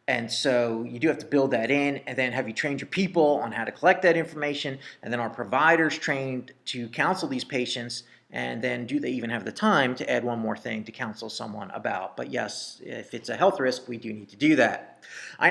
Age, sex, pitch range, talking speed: 30-49, male, 120-145 Hz, 240 wpm